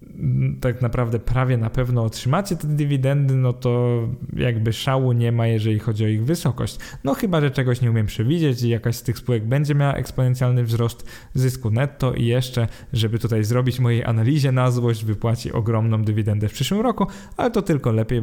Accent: native